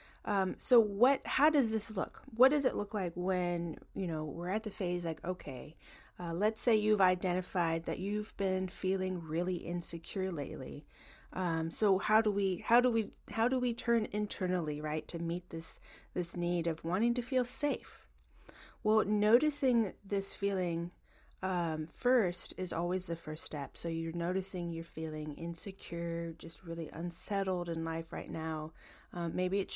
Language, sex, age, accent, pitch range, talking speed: English, female, 30-49, American, 165-205 Hz, 170 wpm